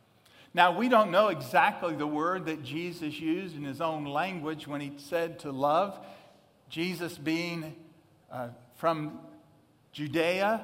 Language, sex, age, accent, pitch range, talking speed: English, male, 50-69, American, 145-190 Hz, 135 wpm